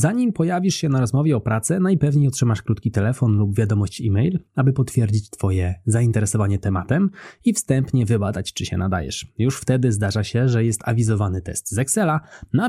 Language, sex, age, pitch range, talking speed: Polish, male, 20-39, 100-130 Hz, 170 wpm